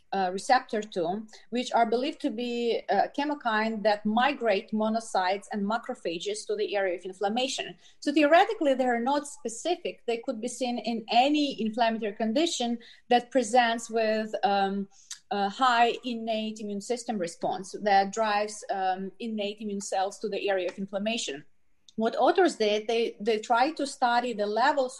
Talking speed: 160 wpm